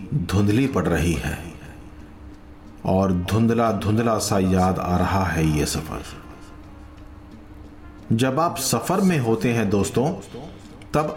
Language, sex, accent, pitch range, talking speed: Hindi, male, native, 90-125 Hz, 120 wpm